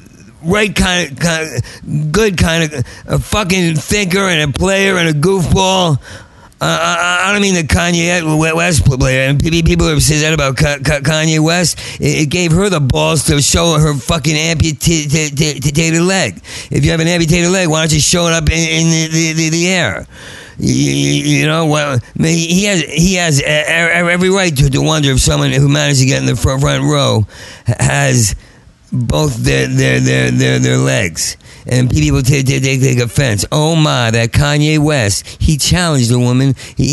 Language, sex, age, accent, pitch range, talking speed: English, male, 50-69, American, 130-165 Hz, 190 wpm